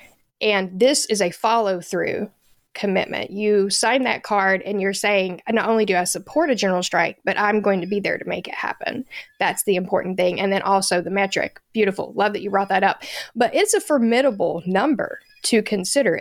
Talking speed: 200 wpm